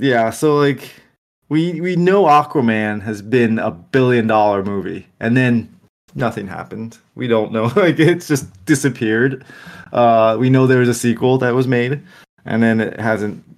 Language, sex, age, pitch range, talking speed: English, male, 20-39, 100-130 Hz, 165 wpm